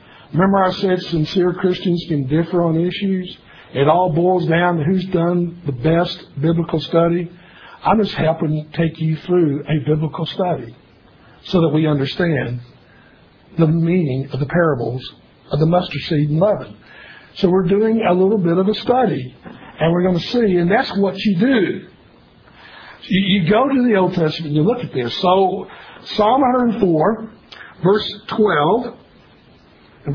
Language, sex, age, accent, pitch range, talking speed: English, male, 60-79, American, 155-185 Hz, 160 wpm